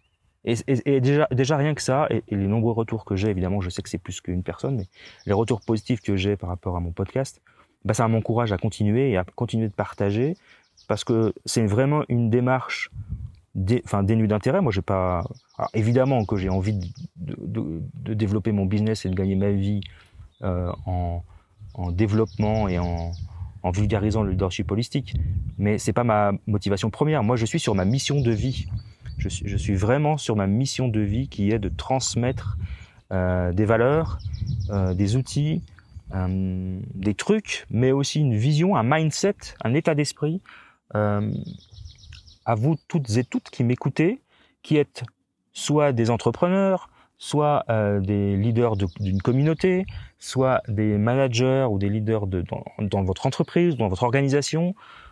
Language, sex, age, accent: French, male, 30-49, French